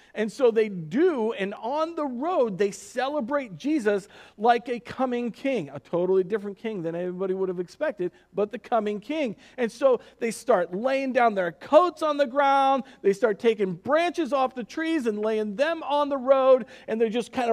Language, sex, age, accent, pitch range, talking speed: English, male, 40-59, American, 210-285 Hz, 190 wpm